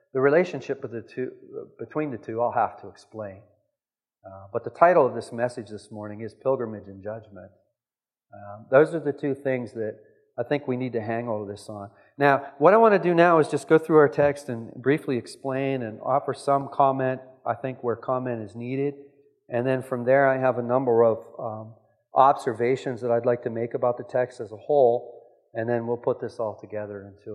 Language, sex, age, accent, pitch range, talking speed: English, male, 40-59, American, 115-145 Hz, 210 wpm